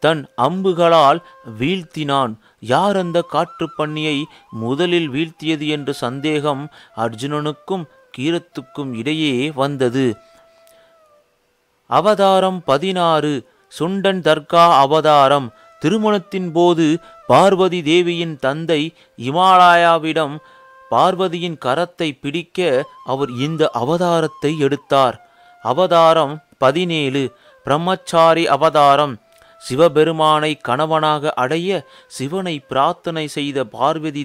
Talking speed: 75 wpm